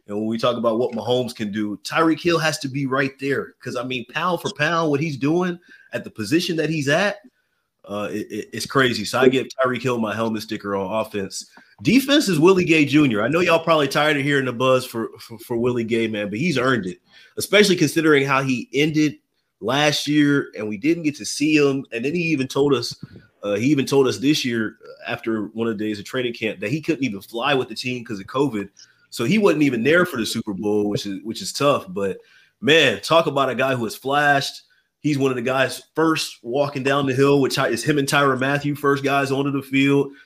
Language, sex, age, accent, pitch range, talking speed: English, male, 30-49, American, 110-145 Hz, 230 wpm